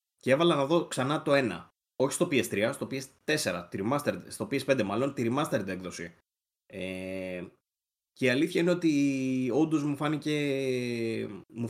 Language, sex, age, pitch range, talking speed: Greek, male, 20-39, 105-135 Hz, 140 wpm